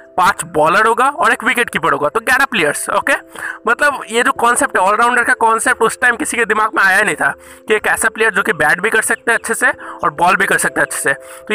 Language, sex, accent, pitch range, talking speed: Hindi, male, native, 205-245 Hz, 260 wpm